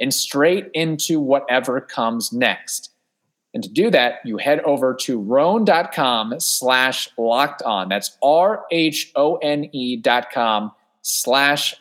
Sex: male